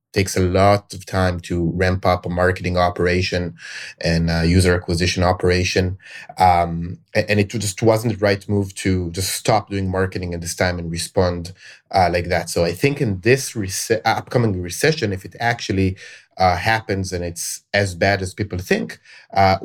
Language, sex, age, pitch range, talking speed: English, male, 30-49, 90-100 Hz, 175 wpm